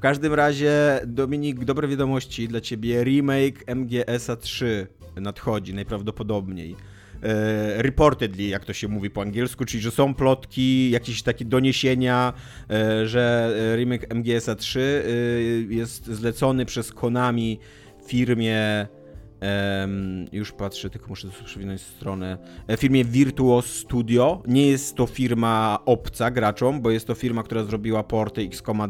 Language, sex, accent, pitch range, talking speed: Polish, male, native, 105-125 Hz, 130 wpm